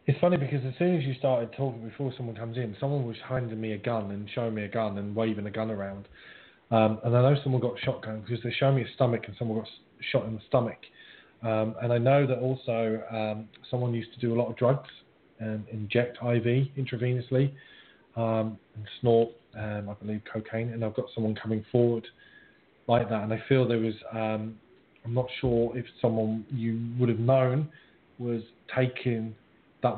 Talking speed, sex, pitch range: 200 wpm, male, 110-130 Hz